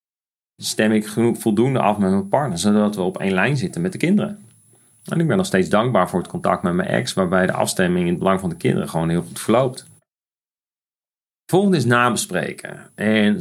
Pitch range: 105-170 Hz